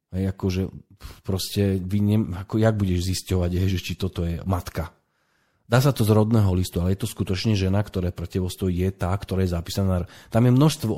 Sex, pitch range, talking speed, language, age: male, 90-115 Hz, 185 wpm, Slovak, 40-59